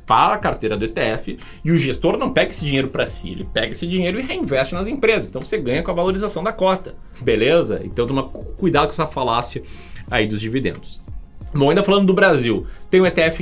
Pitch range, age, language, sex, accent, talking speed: 125-165 Hz, 20-39, Portuguese, male, Brazilian, 215 wpm